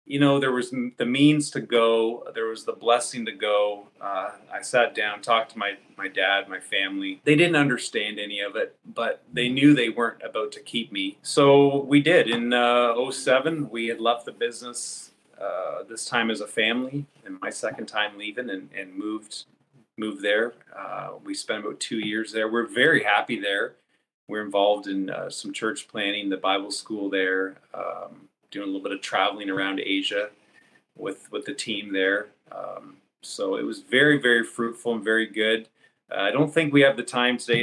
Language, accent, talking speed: English, American, 195 wpm